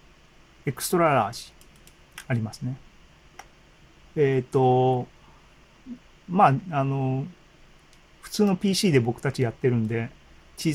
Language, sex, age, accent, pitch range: Japanese, male, 40-59, native, 125-165 Hz